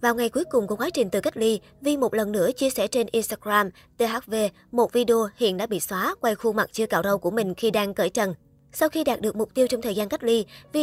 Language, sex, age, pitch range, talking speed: Vietnamese, male, 20-39, 205-245 Hz, 270 wpm